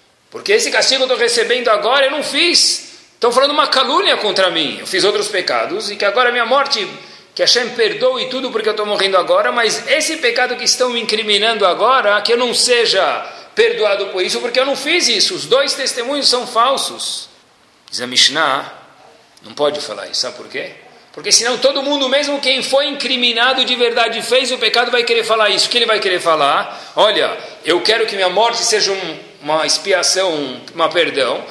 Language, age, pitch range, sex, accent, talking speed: Portuguese, 40-59, 215-290 Hz, male, Brazilian, 200 wpm